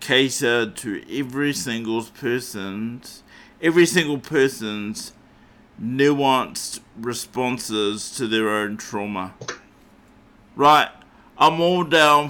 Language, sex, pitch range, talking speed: English, male, 115-130 Hz, 90 wpm